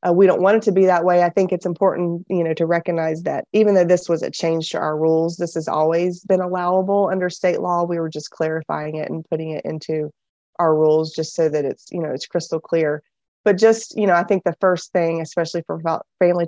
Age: 20-39